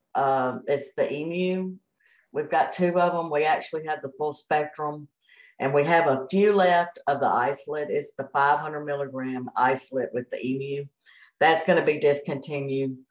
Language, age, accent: English, 60-79, American